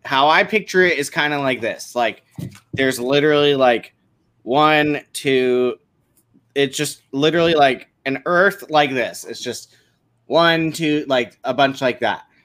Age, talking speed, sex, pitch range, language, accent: 20-39, 155 wpm, male, 125-175 Hz, English, American